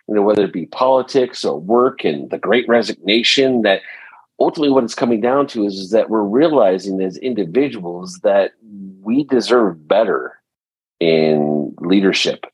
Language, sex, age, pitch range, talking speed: English, male, 40-59, 85-115 Hz, 155 wpm